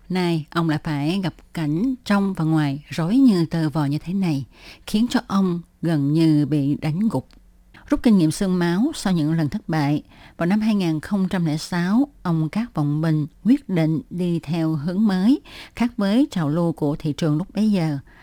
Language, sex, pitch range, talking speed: Vietnamese, female, 155-195 Hz, 190 wpm